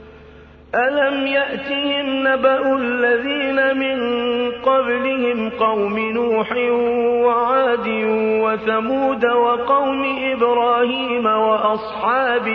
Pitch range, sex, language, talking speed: 235-265 Hz, male, Arabic, 60 wpm